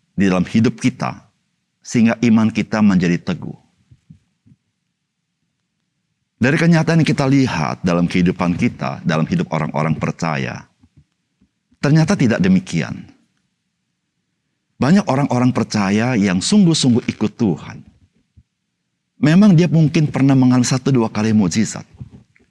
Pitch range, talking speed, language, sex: 105-170 Hz, 105 wpm, Indonesian, male